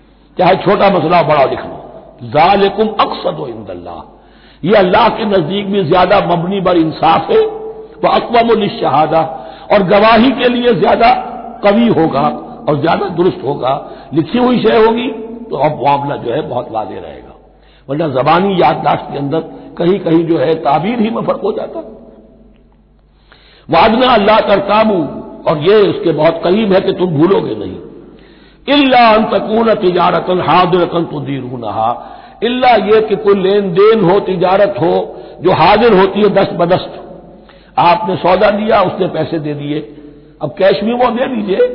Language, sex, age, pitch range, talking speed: Hindi, male, 60-79, 170-220 Hz, 155 wpm